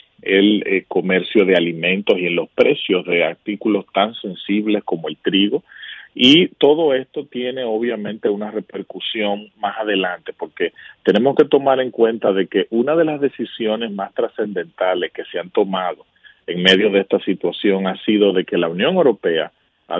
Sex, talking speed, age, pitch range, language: male, 165 wpm, 40-59, 95-130 Hz, Spanish